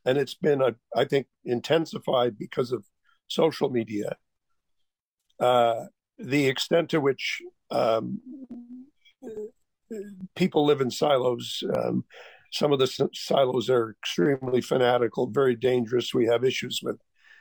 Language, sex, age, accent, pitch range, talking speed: English, male, 50-69, American, 120-170 Hz, 115 wpm